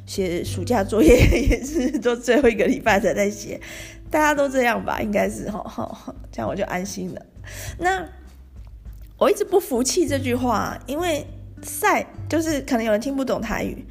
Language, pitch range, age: Chinese, 215-290 Hz, 20-39